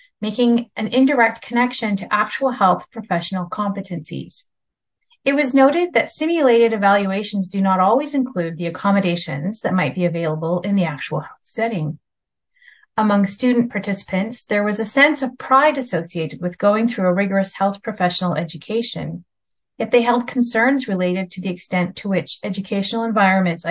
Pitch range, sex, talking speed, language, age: 180-240 Hz, female, 150 wpm, English, 30-49